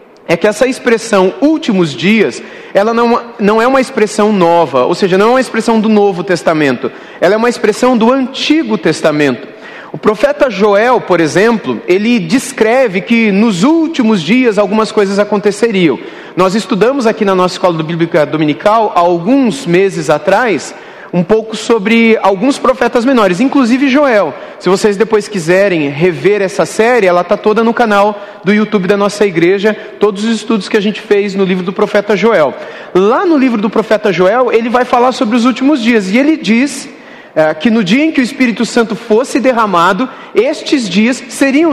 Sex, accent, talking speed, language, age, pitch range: male, Brazilian, 175 wpm, Portuguese, 30-49, 200-260 Hz